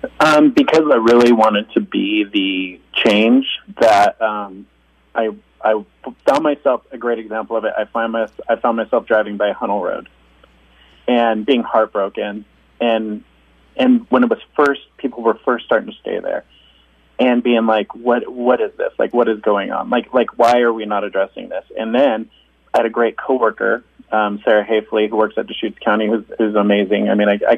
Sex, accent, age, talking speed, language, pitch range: male, American, 30-49, 190 wpm, English, 105-120 Hz